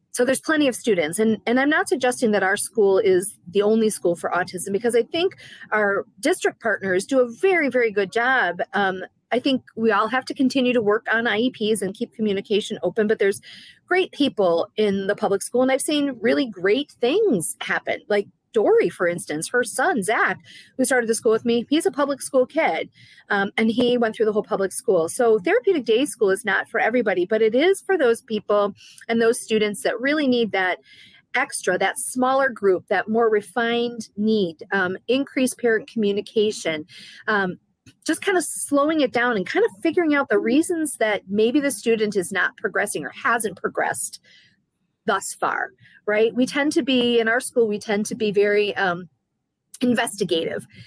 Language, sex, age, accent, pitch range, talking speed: English, female, 30-49, American, 200-255 Hz, 190 wpm